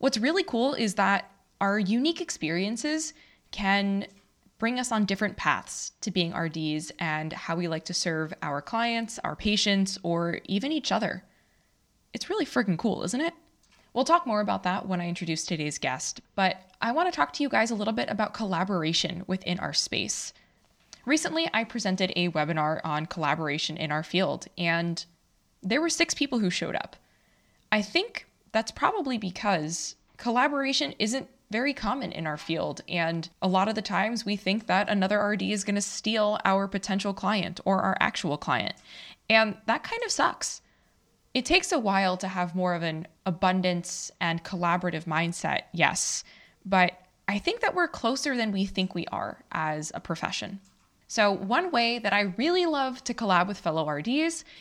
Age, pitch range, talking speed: 20-39, 175-240 Hz, 175 wpm